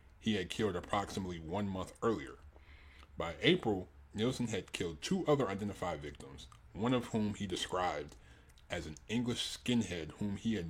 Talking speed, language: 155 wpm, English